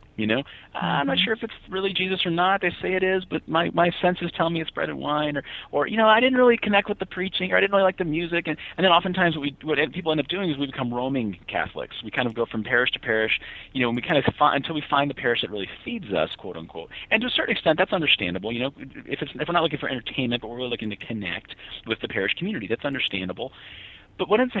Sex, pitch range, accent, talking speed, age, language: male, 110-170 Hz, American, 290 wpm, 30-49, English